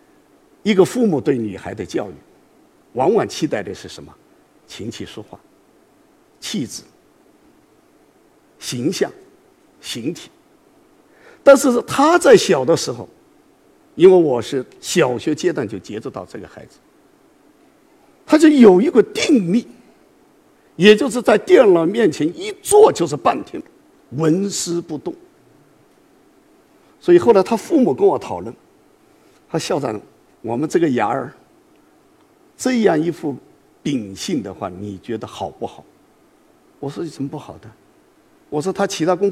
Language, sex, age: Chinese, male, 50-69